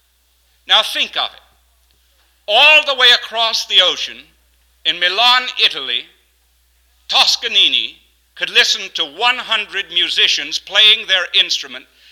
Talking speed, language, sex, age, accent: 110 wpm, English, male, 60-79, American